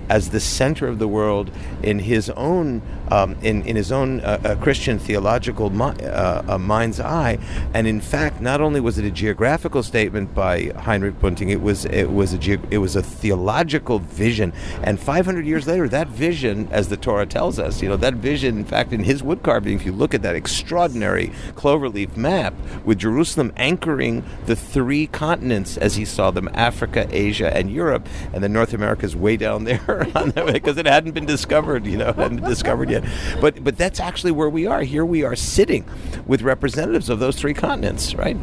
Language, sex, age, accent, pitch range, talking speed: English, male, 50-69, American, 100-130 Hz, 195 wpm